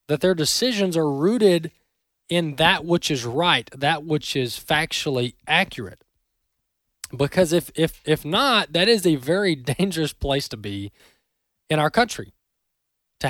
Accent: American